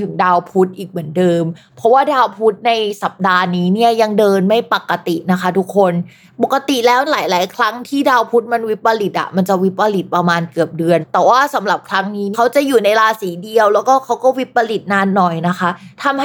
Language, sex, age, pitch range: Thai, female, 20-39, 185-240 Hz